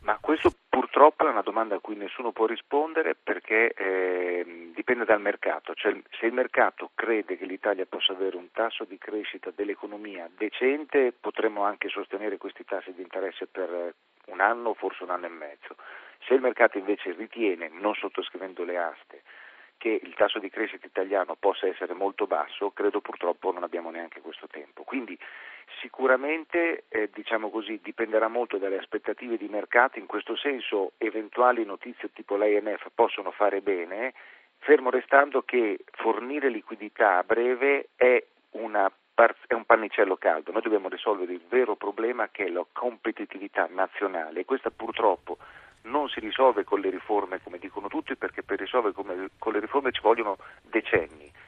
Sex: male